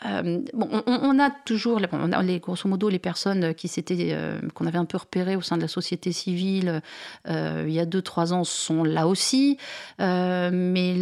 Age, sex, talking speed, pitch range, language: 40-59, female, 210 wpm, 170-215 Hz, French